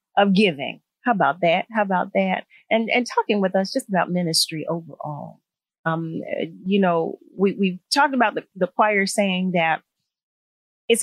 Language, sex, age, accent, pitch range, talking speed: English, female, 40-59, American, 175-225 Hz, 160 wpm